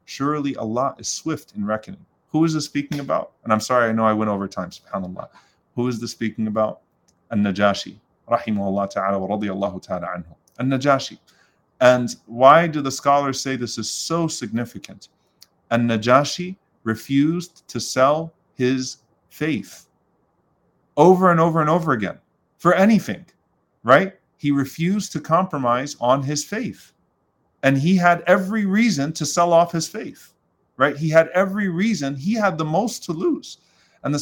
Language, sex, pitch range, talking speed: English, male, 125-175 Hz, 155 wpm